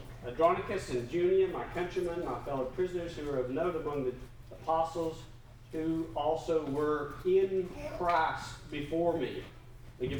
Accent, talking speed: American, 140 wpm